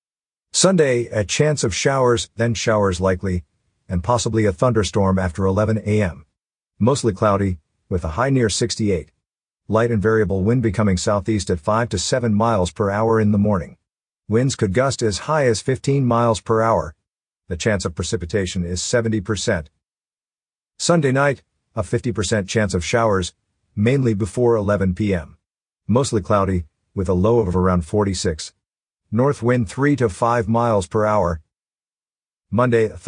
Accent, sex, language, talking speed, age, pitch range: American, male, English, 150 wpm, 50-69, 95-120 Hz